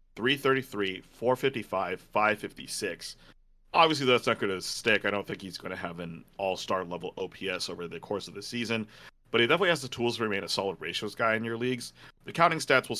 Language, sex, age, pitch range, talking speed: English, male, 30-49, 100-125 Hz, 200 wpm